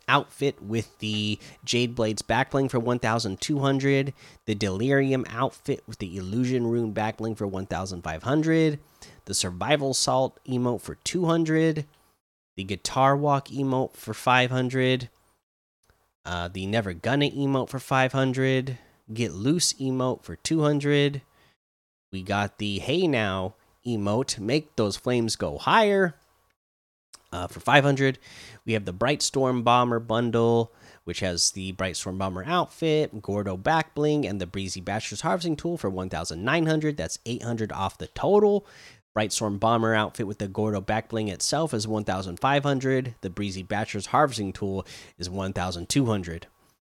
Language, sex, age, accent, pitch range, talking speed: English, male, 30-49, American, 100-140 Hz, 135 wpm